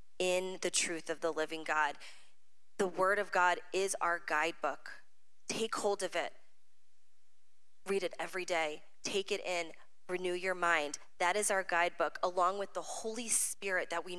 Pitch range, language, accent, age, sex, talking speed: 165-205 Hz, English, American, 20-39, female, 165 wpm